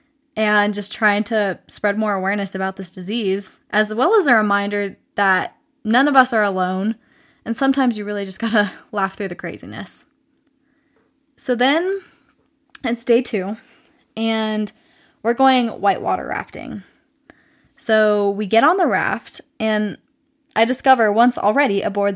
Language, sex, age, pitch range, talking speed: English, female, 10-29, 205-280 Hz, 145 wpm